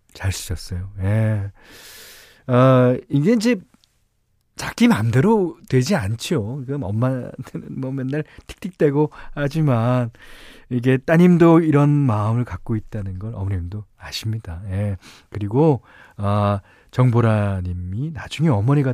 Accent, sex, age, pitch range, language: native, male, 40-59, 100-165 Hz, Korean